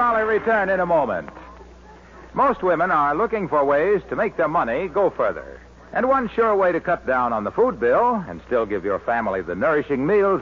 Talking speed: 205 wpm